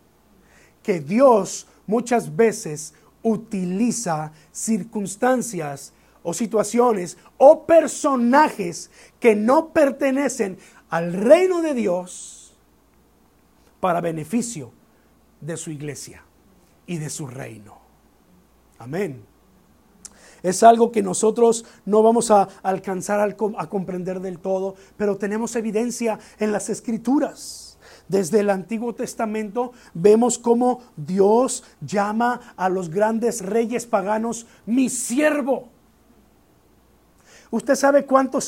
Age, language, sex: 50-69, Spanish, male